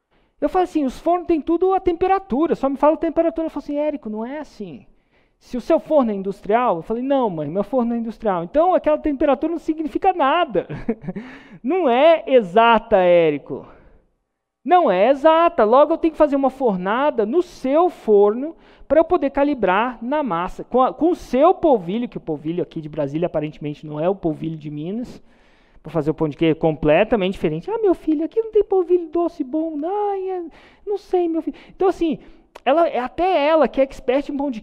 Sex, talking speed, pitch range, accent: male, 200 wpm, 215-305 Hz, Brazilian